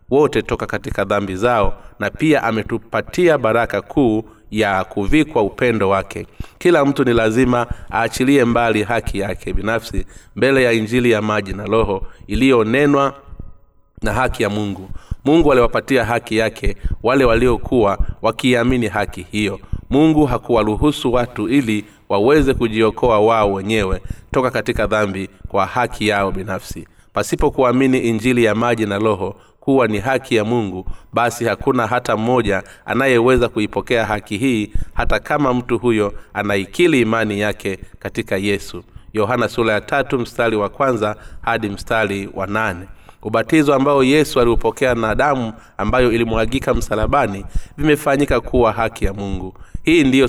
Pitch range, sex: 100-125 Hz, male